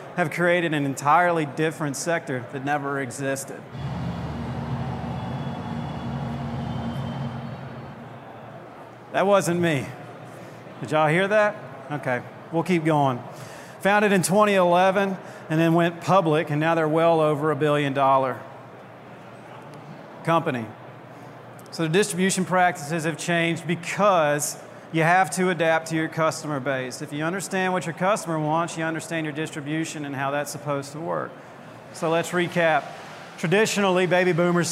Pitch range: 145-175 Hz